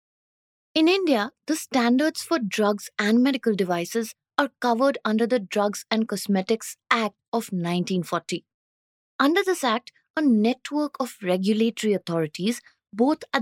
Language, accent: English, Indian